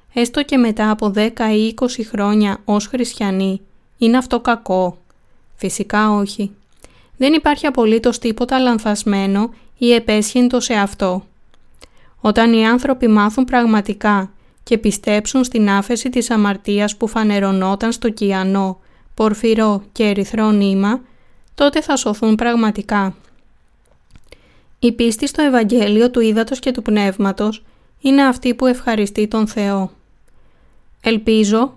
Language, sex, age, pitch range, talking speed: Greek, female, 20-39, 205-240 Hz, 175 wpm